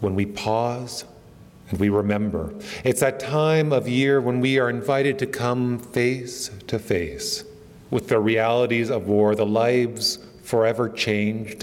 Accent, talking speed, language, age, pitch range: American, 150 wpm, English, 40-59, 105-130 Hz